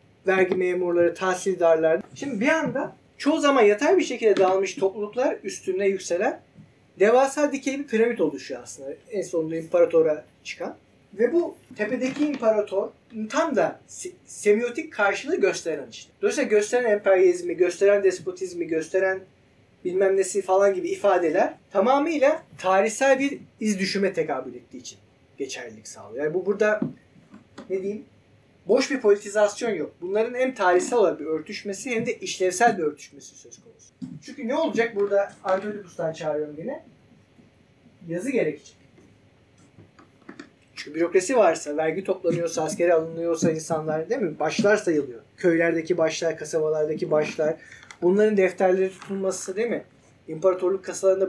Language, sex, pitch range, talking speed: Turkish, male, 175-235 Hz, 130 wpm